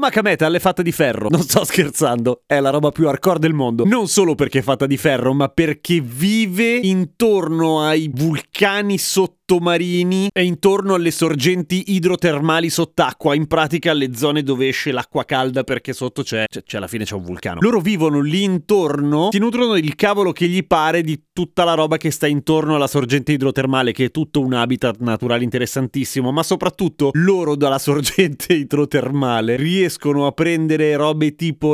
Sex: male